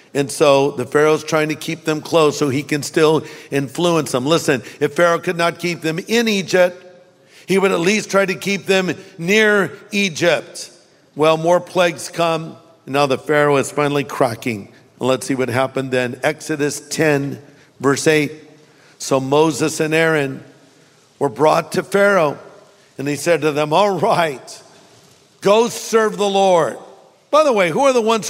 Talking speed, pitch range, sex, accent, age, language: 170 wpm, 150-190 Hz, male, American, 50-69, English